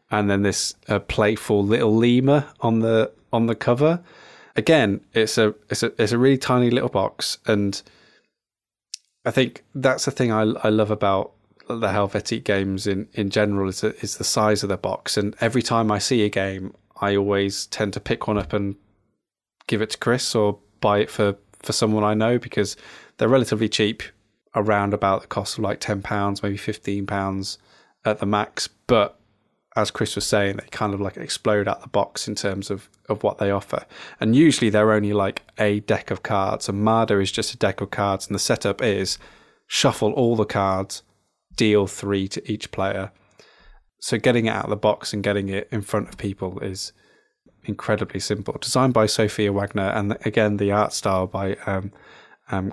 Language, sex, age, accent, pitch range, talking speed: English, male, 20-39, British, 100-110 Hz, 195 wpm